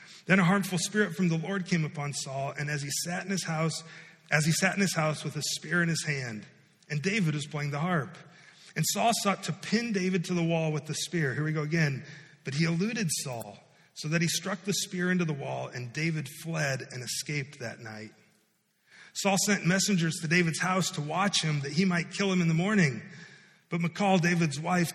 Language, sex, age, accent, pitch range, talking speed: English, male, 30-49, American, 155-185 Hz, 220 wpm